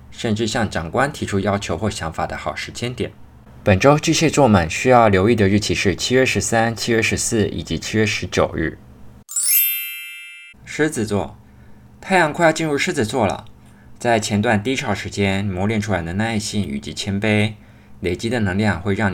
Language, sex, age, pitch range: Chinese, male, 20-39, 90-110 Hz